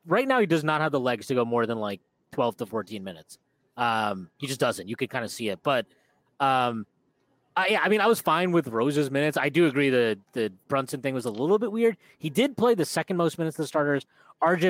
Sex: male